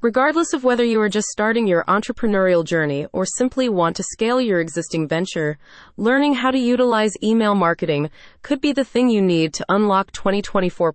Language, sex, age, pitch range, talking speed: English, female, 30-49, 170-230 Hz, 180 wpm